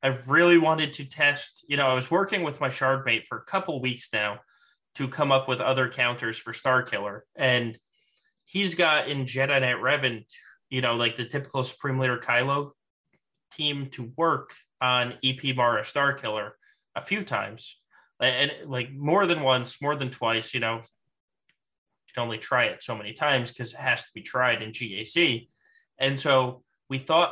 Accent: American